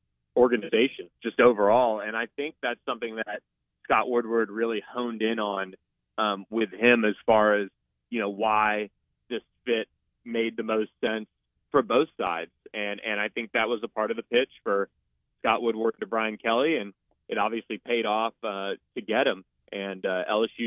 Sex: male